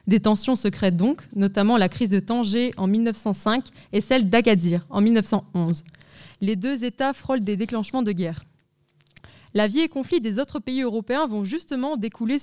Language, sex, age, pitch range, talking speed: French, female, 20-39, 200-245 Hz, 170 wpm